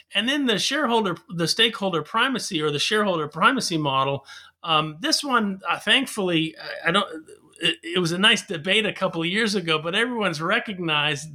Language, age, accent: English, 40-59, American